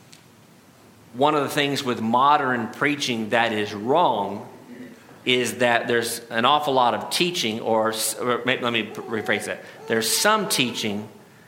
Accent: American